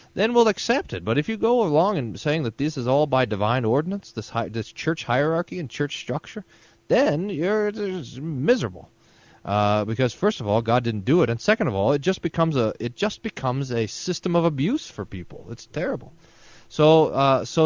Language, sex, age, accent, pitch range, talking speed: English, male, 30-49, American, 115-180 Hz, 205 wpm